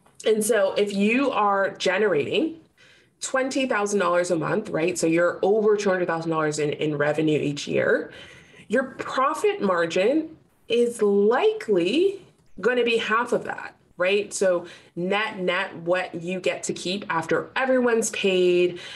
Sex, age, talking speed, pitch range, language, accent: female, 20-39, 135 wpm, 170-240 Hz, English, American